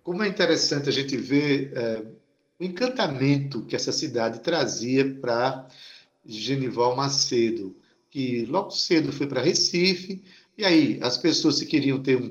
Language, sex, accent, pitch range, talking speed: Portuguese, male, Brazilian, 130-180 Hz, 145 wpm